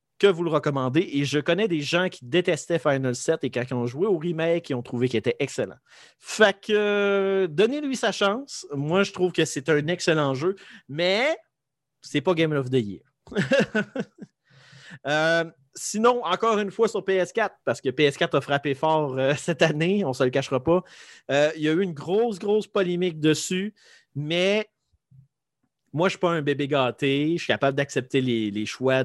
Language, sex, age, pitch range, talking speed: French, male, 30-49, 135-175 Hz, 195 wpm